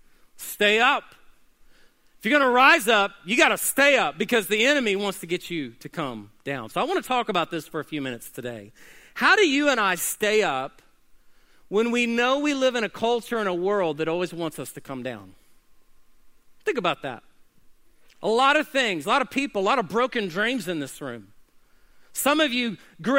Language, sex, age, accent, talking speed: English, male, 40-59, American, 215 wpm